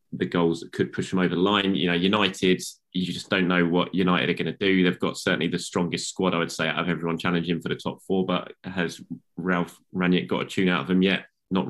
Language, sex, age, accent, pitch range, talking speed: English, male, 20-39, British, 85-95 Hz, 260 wpm